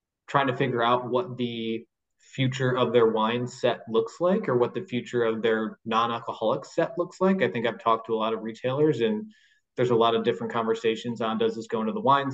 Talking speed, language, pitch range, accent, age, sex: 225 wpm, English, 110-130 Hz, American, 20-39, male